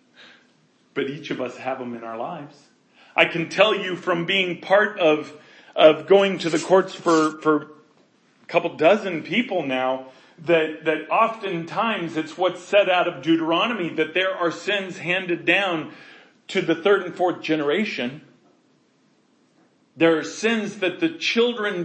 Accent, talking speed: American, 155 wpm